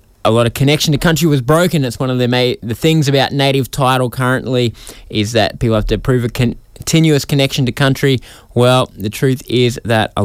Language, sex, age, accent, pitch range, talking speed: English, male, 20-39, Australian, 105-140 Hz, 215 wpm